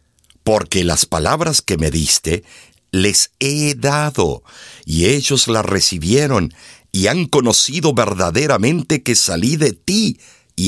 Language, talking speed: Spanish, 125 wpm